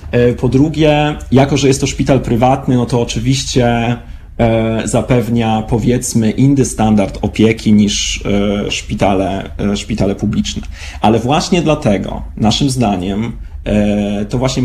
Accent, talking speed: native, 110 wpm